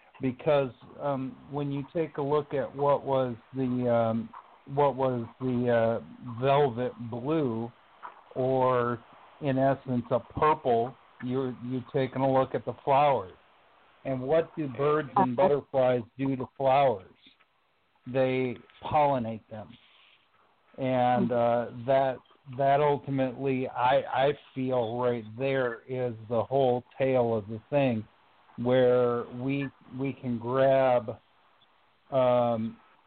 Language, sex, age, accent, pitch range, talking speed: English, male, 60-79, American, 120-135 Hz, 120 wpm